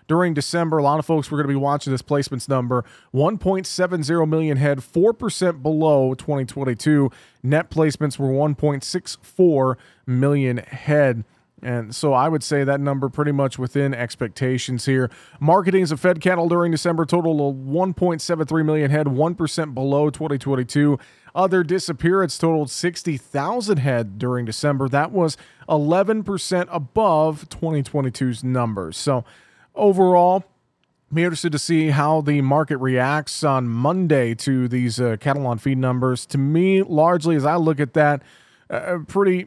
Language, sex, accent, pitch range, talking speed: English, male, American, 130-165 Hz, 140 wpm